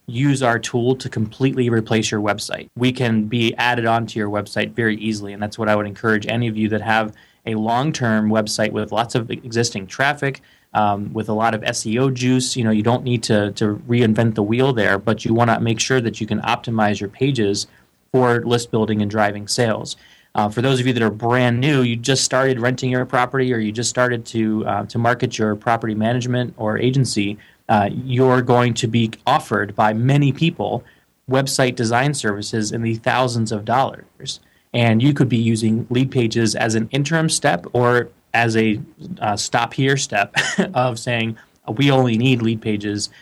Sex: male